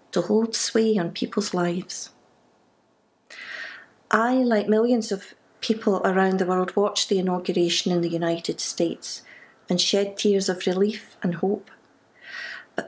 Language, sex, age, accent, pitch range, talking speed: English, female, 40-59, British, 190-225 Hz, 135 wpm